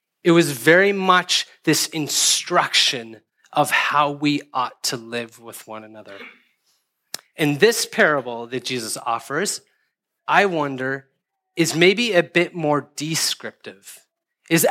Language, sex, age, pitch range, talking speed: English, male, 30-49, 145-185 Hz, 120 wpm